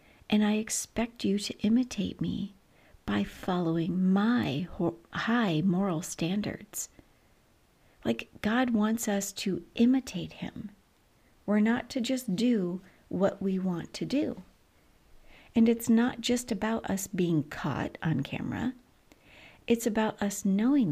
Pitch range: 185-235 Hz